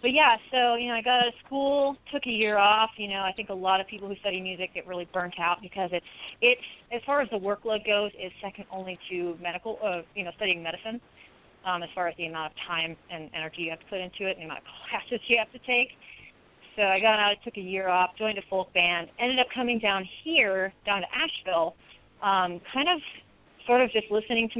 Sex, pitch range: female, 180-235 Hz